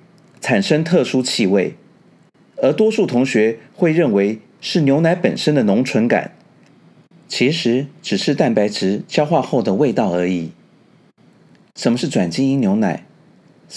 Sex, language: male, Chinese